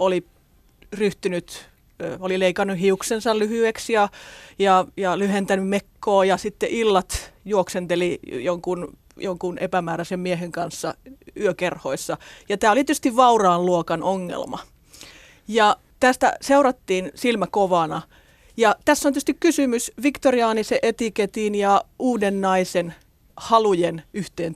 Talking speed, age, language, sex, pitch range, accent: 110 wpm, 30-49, Finnish, female, 185-250 Hz, native